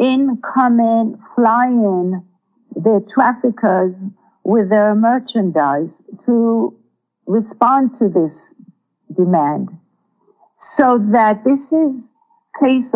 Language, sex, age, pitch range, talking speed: English, female, 50-69, 195-240 Hz, 85 wpm